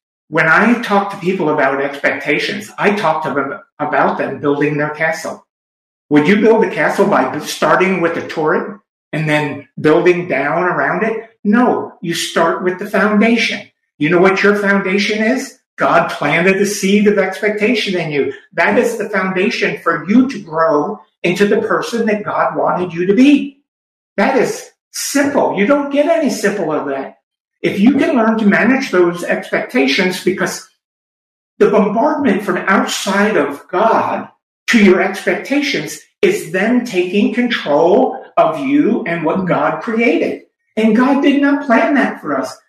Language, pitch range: English, 180-250 Hz